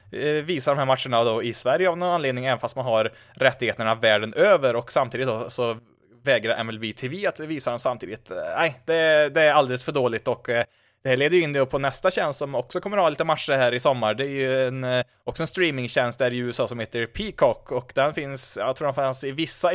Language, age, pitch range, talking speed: Swedish, 20-39, 115-145 Hz, 230 wpm